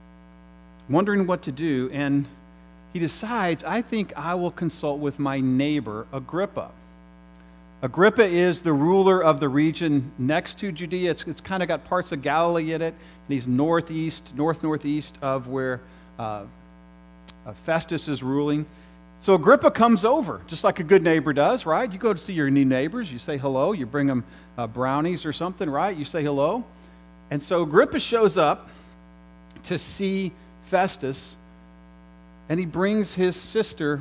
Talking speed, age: 160 wpm, 50-69